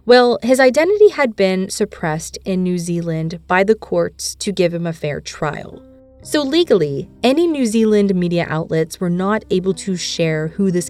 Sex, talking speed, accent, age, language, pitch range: female, 175 wpm, American, 20-39, English, 170-230 Hz